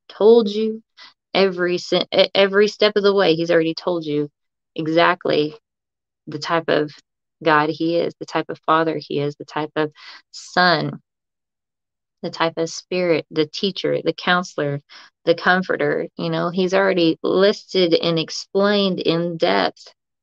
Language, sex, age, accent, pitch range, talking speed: English, female, 20-39, American, 155-205 Hz, 145 wpm